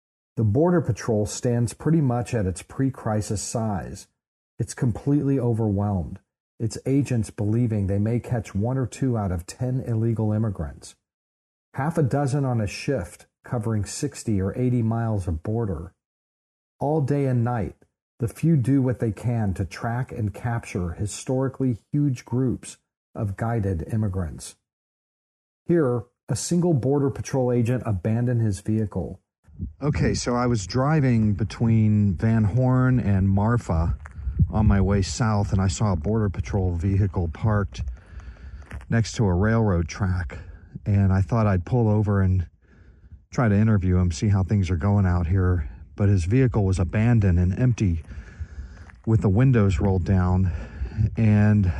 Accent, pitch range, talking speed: American, 90-120 Hz, 145 wpm